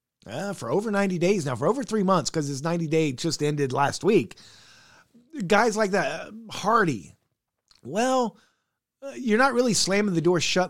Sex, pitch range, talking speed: male, 135-180 Hz, 175 wpm